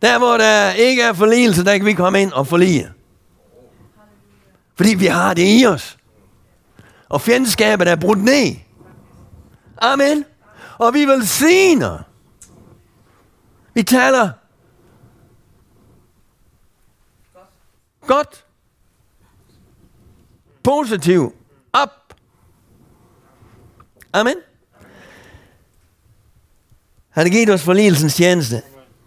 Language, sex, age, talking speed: Danish, male, 60-79, 85 wpm